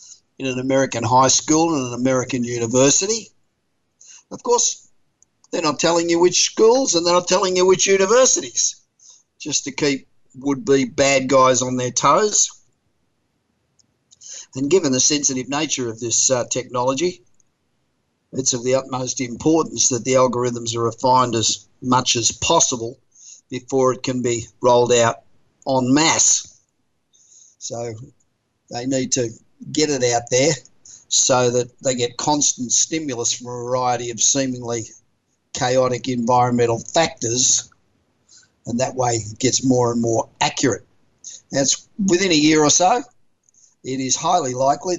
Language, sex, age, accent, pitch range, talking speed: English, male, 50-69, Australian, 125-145 Hz, 140 wpm